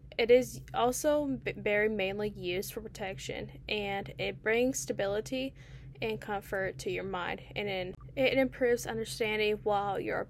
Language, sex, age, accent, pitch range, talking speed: English, female, 10-29, American, 160-230 Hz, 140 wpm